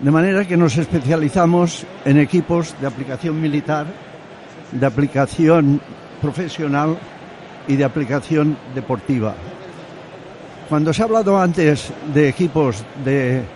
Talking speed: 110 wpm